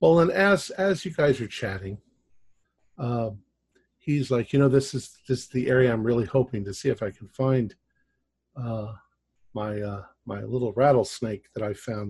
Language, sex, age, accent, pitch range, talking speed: English, male, 50-69, American, 105-145 Hz, 180 wpm